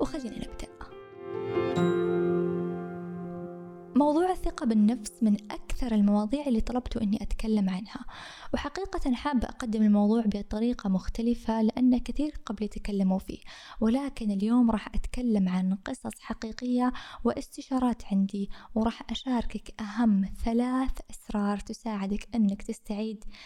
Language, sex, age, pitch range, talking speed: Arabic, female, 20-39, 205-255 Hz, 100 wpm